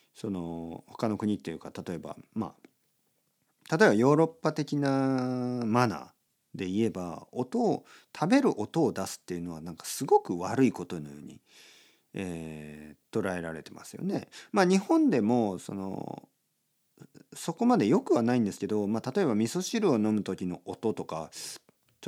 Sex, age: male, 50-69